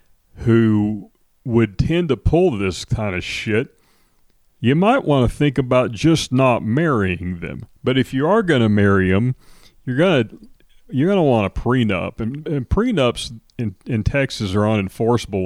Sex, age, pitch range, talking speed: male, 40-59, 100-120 Hz, 170 wpm